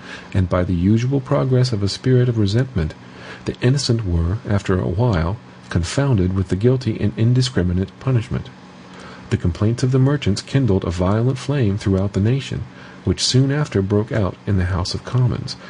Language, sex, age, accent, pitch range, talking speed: English, male, 50-69, American, 95-125 Hz, 170 wpm